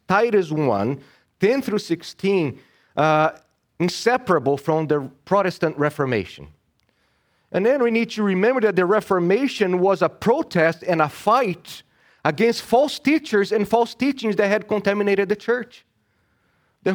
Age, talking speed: 30-49, 135 wpm